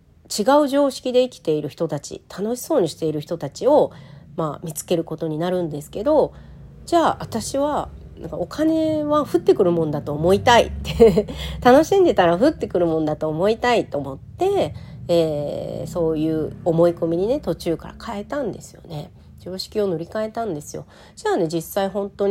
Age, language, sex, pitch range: 40-59, Japanese, female, 155-230 Hz